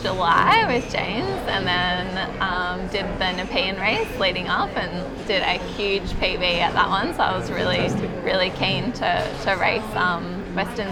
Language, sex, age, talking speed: English, female, 20-39, 170 wpm